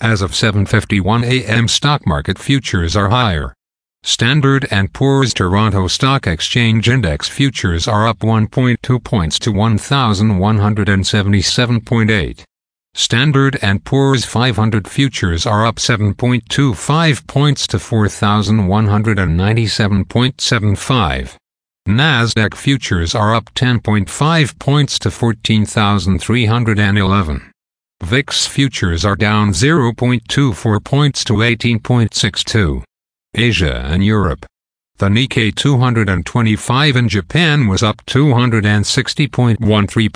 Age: 50-69